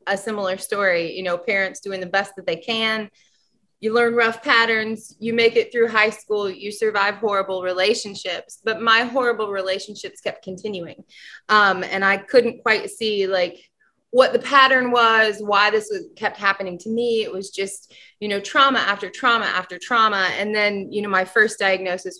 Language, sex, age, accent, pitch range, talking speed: English, female, 20-39, American, 190-230 Hz, 180 wpm